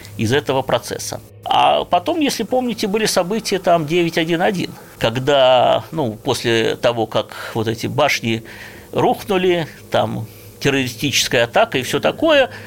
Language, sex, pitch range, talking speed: Russian, male, 115-170 Hz, 125 wpm